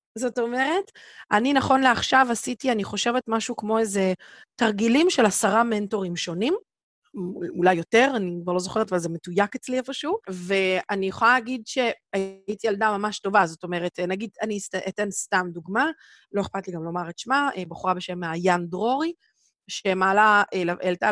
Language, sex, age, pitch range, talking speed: Hebrew, female, 30-49, 180-230 Hz, 155 wpm